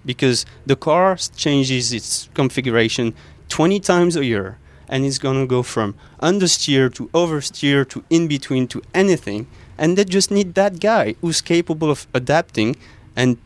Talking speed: 150 wpm